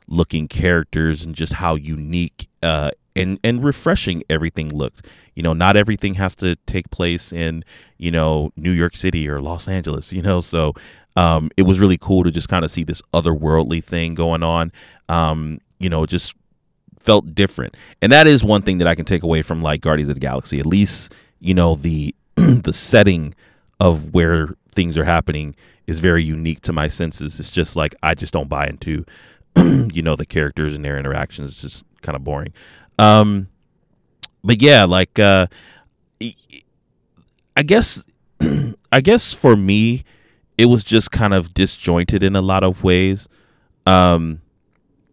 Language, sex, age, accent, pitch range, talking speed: English, male, 30-49, American, 80-100 Hz, 175 wpm